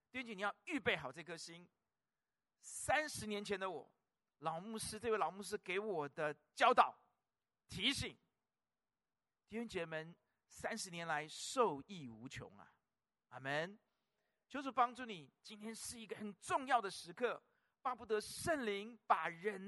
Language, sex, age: Chinese, male, 50-69